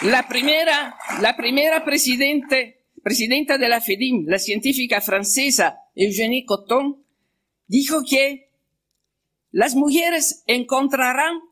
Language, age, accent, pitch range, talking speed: Spanish, 50-69, Italian, 205-275 Hz, 100 wpm